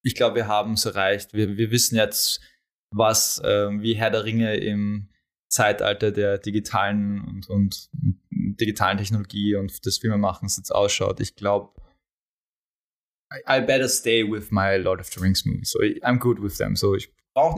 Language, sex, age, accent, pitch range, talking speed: German, male, 20-39, German, 100-115 Hz, 165 wpm